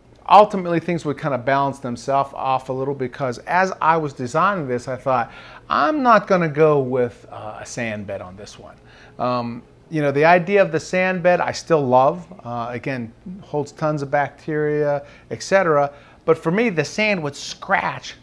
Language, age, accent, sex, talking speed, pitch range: English, 40-59, American, male, 190 wpm, 125-150 Hz